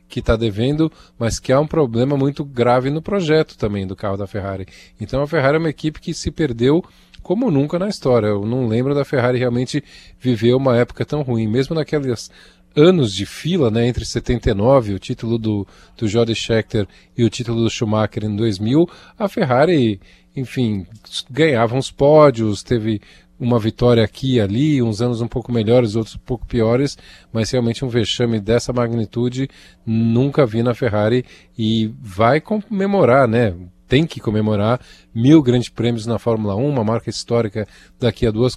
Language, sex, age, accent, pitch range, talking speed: Portuguese, male, 20-39, Brazilian, 110-130 Hz, 175 wpm